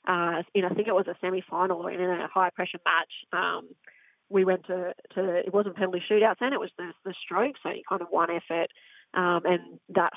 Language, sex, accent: English, female, Australian